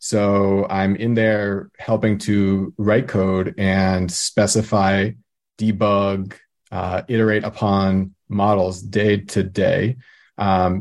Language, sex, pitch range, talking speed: English, male, 100-115 Hz, 105 wpm